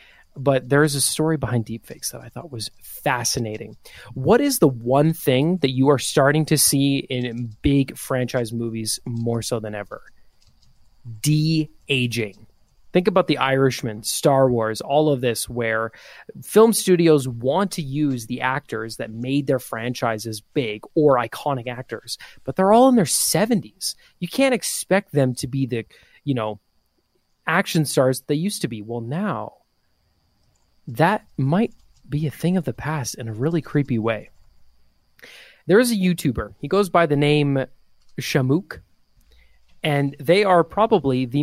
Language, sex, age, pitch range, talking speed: English, male, 20-39, 125-170 Hz, 155 wpm